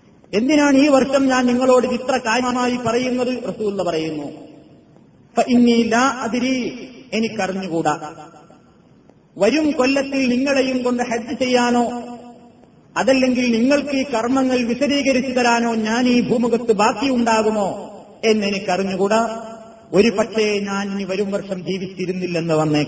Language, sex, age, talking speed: Malayalam, male, 30-49, 95 wpm